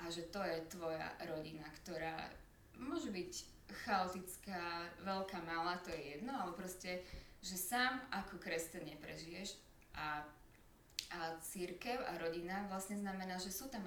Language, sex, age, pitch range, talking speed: Slovak, female, 20-39, 155-180 Hz, 145 wpm